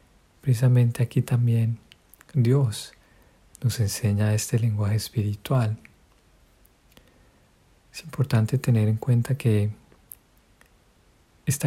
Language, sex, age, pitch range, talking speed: Spanish, male, 40-59, 110-130 Hz, 80 wpm